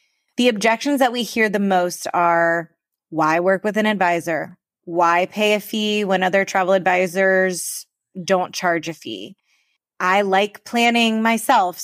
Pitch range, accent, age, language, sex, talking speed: 180-215 Hz, American, 20-39, English, female, 145 wpm